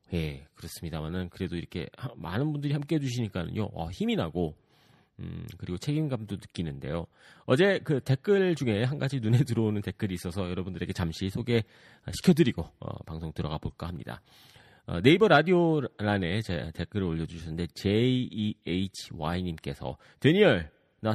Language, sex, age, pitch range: Korean, male, 40-59, 95-145 Hz